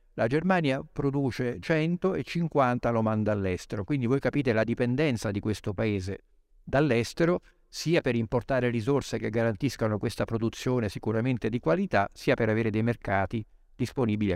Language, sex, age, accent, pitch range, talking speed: Italian, male, 50-69, native, 110-135 Hz, 140 wpm